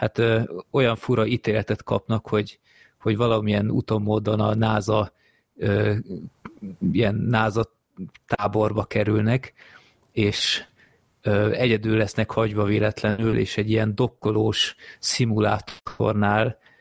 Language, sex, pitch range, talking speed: Hungarian, male, 105-115 Hz, 85 wpm